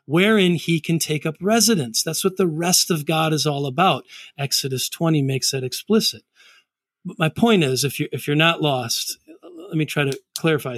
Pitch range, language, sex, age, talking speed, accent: 145-190 Hz, English, male, 40-59, 195 wpm, American